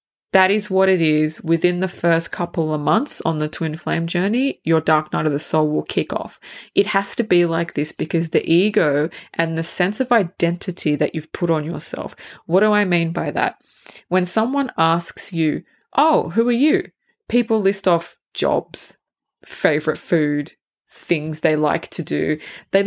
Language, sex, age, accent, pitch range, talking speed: English, female, 20-39, Australian, 160-200 Hz, 185 wpm